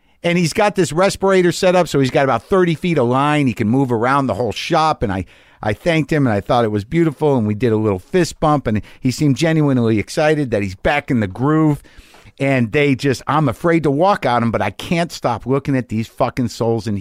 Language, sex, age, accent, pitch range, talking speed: English, male, 50-69, American, 115-155 Hz, 245 wpm